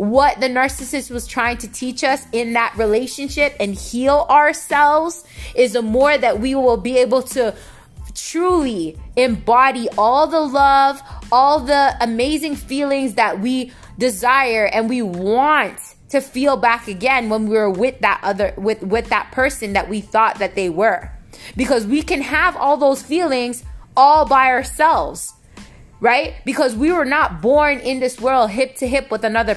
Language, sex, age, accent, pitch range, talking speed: English, female, 20-39, American, 230-280 Hz, 165 wpm